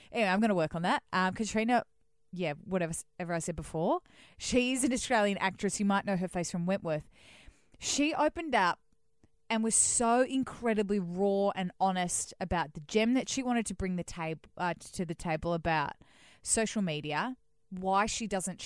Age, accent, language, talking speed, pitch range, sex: 20-39, Australian, English, 180 wpm, 170-210 Hz, female